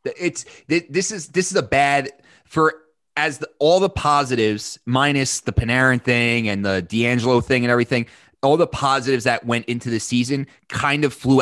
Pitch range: 120-150 Hz